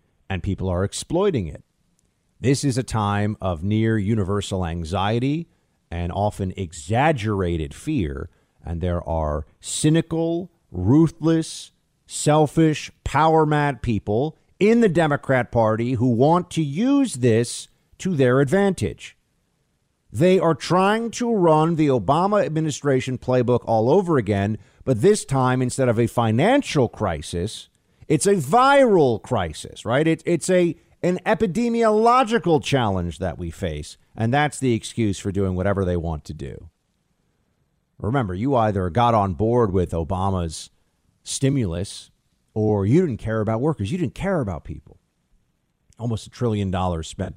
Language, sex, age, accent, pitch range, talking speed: English, male, 50-69, American, 95-150 Hz, 135 wpm